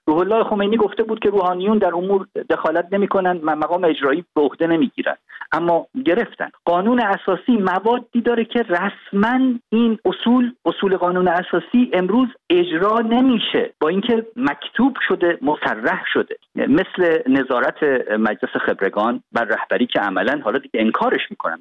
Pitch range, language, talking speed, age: 180-250 Hz, Persian, 140 wpm, 50-69